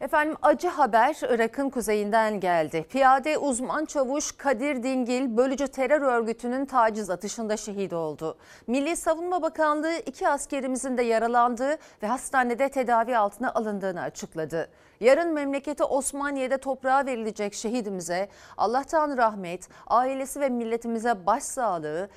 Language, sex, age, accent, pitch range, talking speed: Turkish, female, 40-59, native, 215-295 Hz, 115 wpm